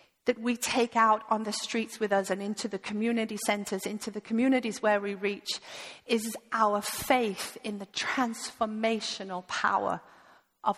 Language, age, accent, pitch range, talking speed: English, 40-59, British, 210-245 Hz, 155 wpm